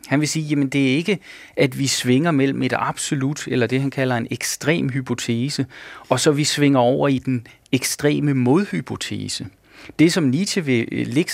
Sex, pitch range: male, 130-155 Hz